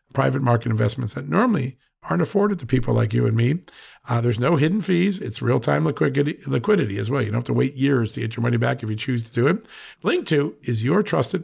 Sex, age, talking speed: male, 50-69, 230 wpm